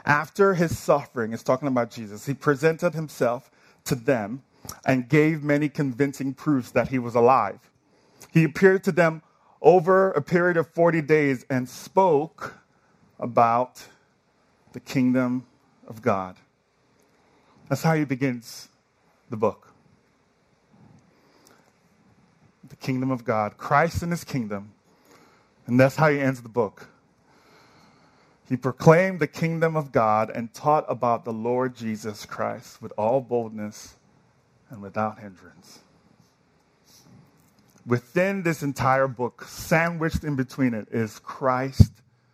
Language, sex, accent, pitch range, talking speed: English, male, American, 120-150 Hz, 125 wpm